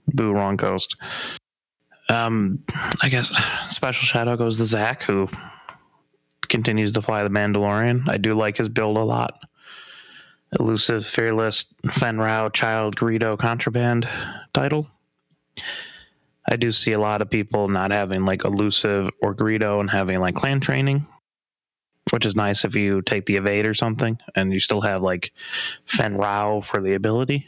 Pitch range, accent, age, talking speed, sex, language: 105-120 Hz, American, 20-39, 150 wpm, male, English